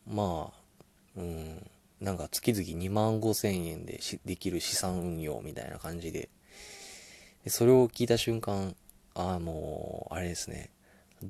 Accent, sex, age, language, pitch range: native, male, 20-39, Japanese, 90-110 Hz